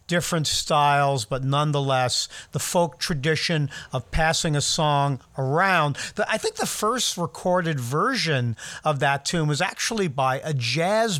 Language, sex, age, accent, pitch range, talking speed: English, male, 50-69, American, 135-180 Hz, 145 wpm